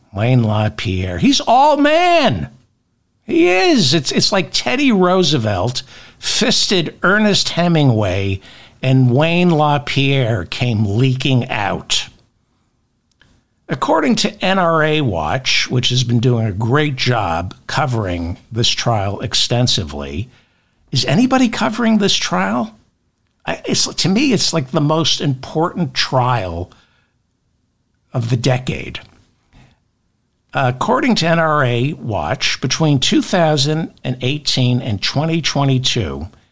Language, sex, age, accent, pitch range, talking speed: English, male, 60-79, American, 115-160 Hz, 100 wpm